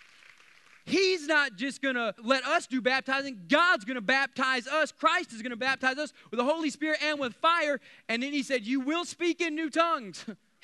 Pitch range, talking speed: 245-315 Hz, 210 wpm